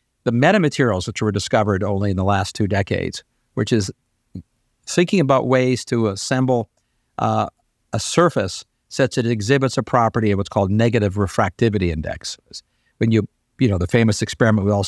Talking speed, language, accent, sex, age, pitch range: 170 wpm, English, American, male, 50-69, 105-130 Hz